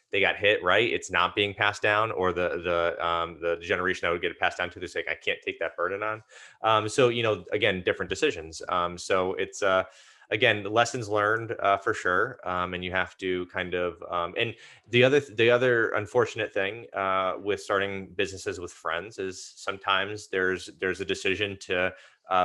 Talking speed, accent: 205 wpm, American